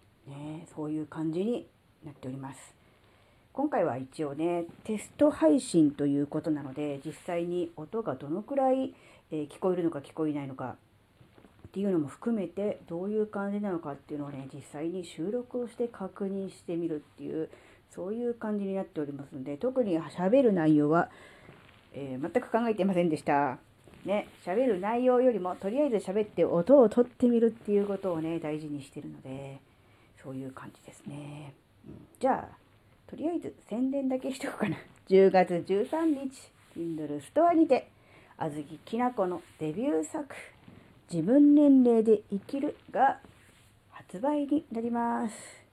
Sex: female